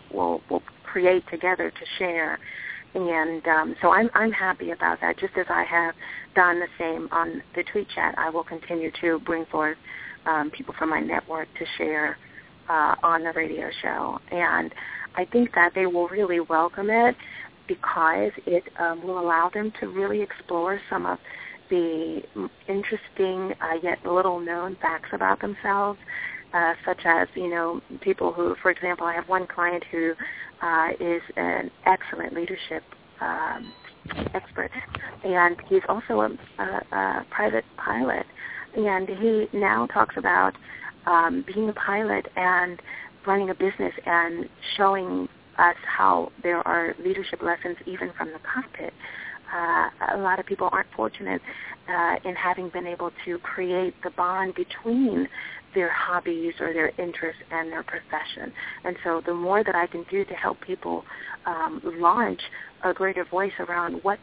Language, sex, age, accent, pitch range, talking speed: English, female, 30-49, American, 170-195 Hz, 160 wpm